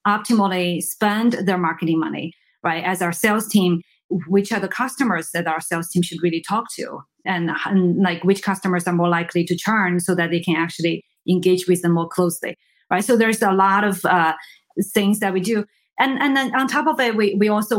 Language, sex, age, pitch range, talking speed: English, female, 30-49, 175-210 Hz, 215 wpm